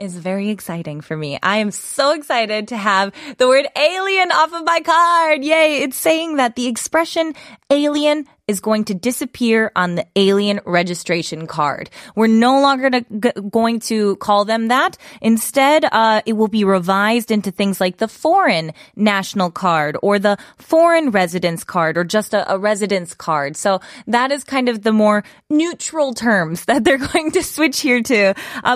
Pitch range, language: 195-275 Hz, Korean